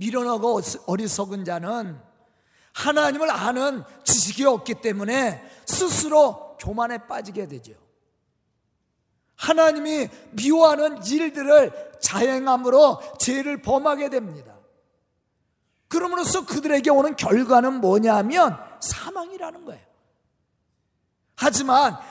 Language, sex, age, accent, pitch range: Korean, male, 40-59, native, 210-285 Hz